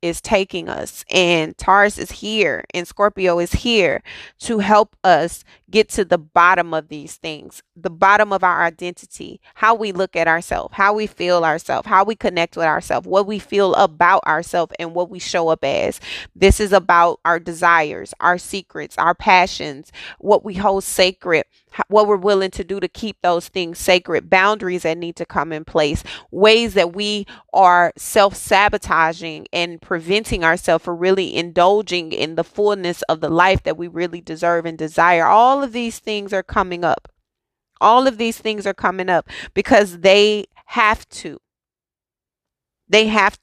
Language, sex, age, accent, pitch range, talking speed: English, female, 20-39, American, 175-210 Hz, 170 wpm